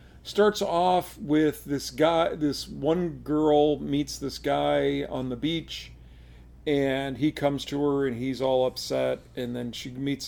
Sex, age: male, 50-69